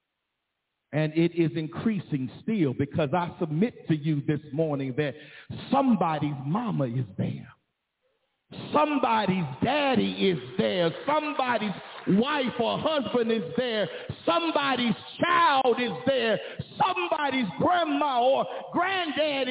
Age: 50-69